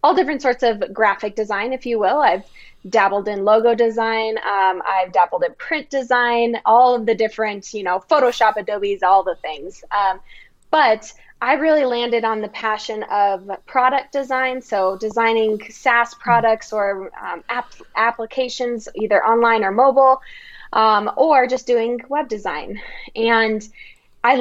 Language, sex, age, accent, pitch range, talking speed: English, female, 10-29, American, 210-245 Hz, 150 wpm